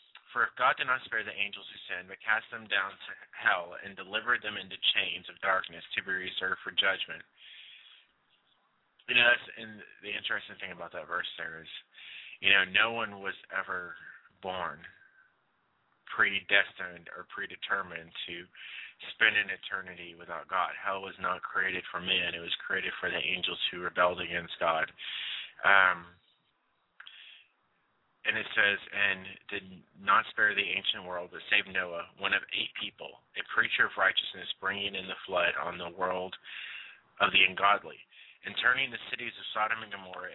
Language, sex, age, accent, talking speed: English, male, 20-39, American, 165 wpm